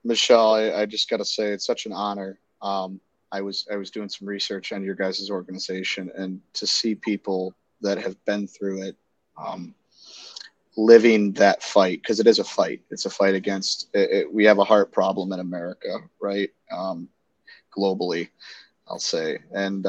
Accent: American